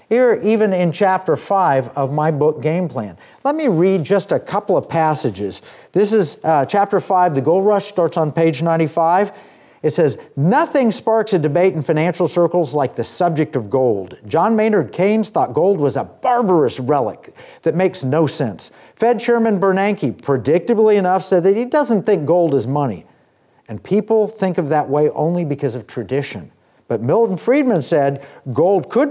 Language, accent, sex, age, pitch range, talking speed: English, American, male, 50-69, 145-200 Hz, 175 wpm